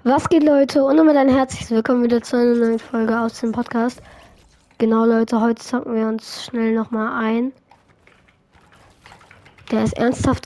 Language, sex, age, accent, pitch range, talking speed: English, female, 20-39, German, 210-250 Hz, 160 wpm